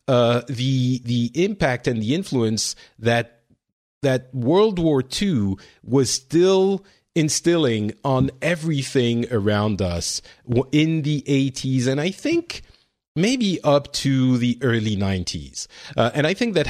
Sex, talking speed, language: male, 130 wpm, English